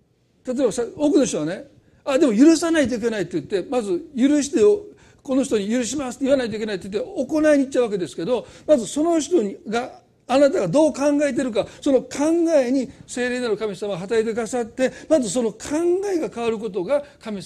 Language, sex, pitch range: Japanese, male, 175-275 Hz